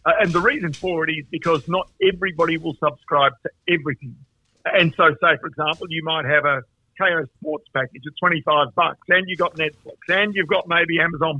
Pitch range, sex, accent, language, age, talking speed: 160-195 Hz, male, Australian, English, 50-69, 205 wpm